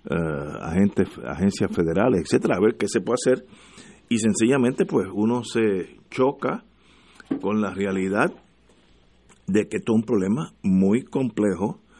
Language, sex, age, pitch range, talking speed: Spanish, male, 50-69, 95-115 Hz, 125 wpm